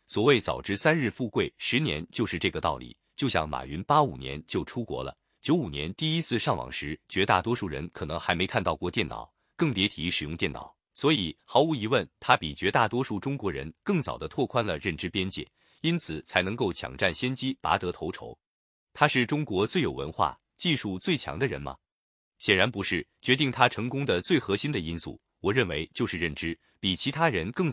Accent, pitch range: native, 85-140 Hz